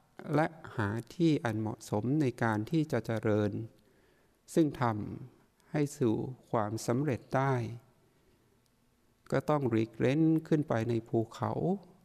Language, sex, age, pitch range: Thai, male, 60-79, 115-150 Hz